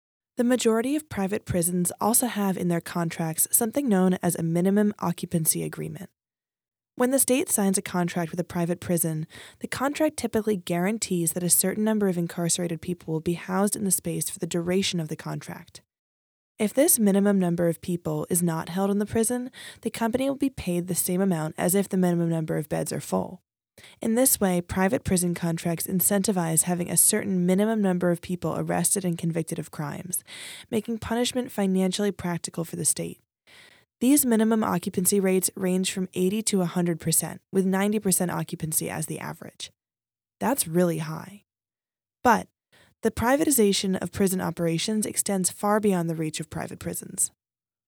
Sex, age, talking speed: female, 20-39, 170 wpm